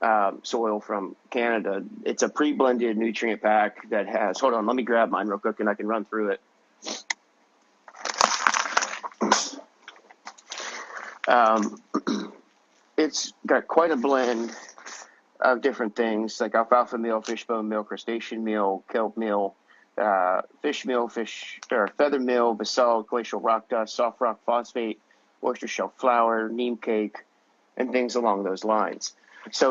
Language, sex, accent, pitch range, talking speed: English, male, American, 105-120 Hz, 135 wpm